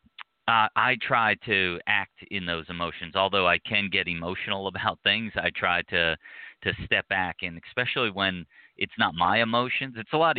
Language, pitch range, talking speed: English, 85-100 Hz, 180 wpm